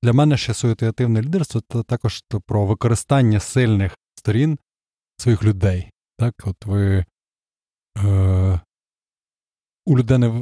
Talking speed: 115 wpm